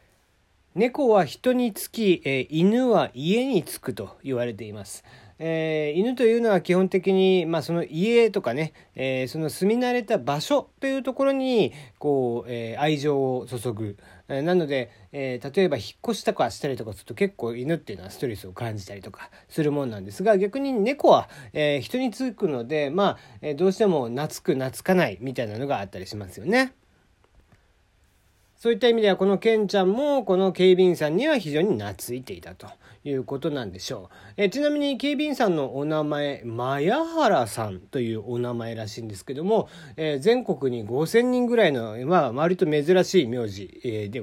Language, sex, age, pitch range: Japanese, male, 40-59, 120-195 Hz